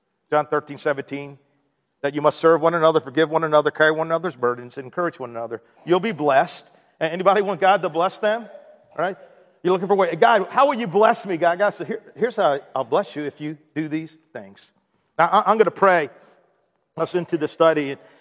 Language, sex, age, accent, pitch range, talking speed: English, male, 50-69, American, 155-200 Hz, 215 wpm